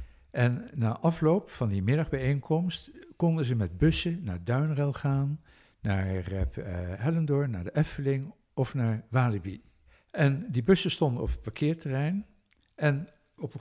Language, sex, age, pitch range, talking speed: Dutch, male, 60-79, 115-170 Hz, 140 wpm